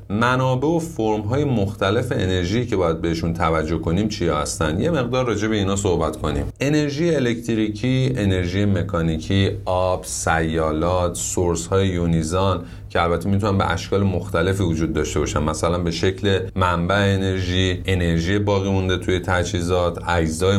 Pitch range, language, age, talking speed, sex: 85-105 Hz, Persian, 30-49, 140 wpm, male